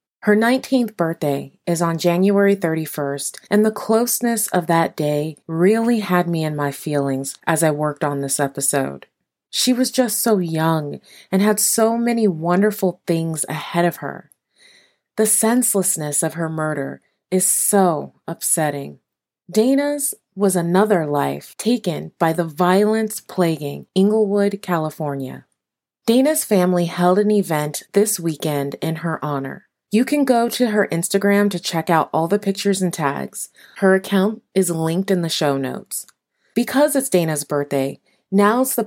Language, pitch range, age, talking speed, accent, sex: English, 160-215 Hz, 20-39, 150 wpm, American, female